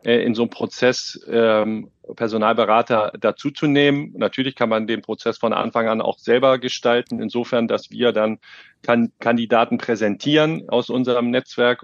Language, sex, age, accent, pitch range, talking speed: German, male, 40-59, German, 115-130 Hz, 135 wpm